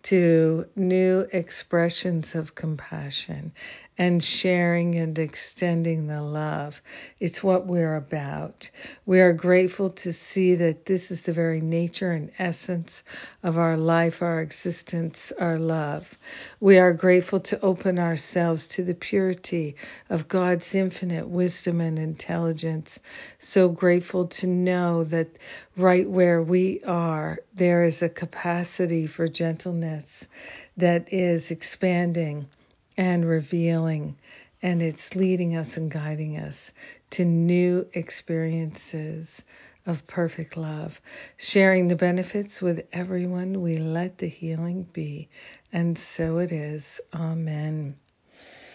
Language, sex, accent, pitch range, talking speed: English, female, American, 160-185 Hz, 120 wpm